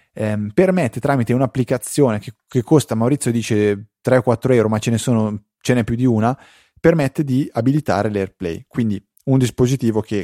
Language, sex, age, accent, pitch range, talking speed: Italian, male, 20-39, native, 105-125 Hz, 150 wpm